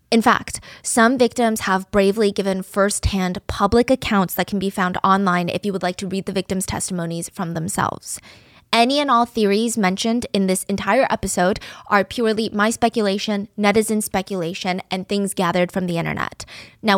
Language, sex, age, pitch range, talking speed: English, female, 20-39, 190-225 Hz, 170 wpm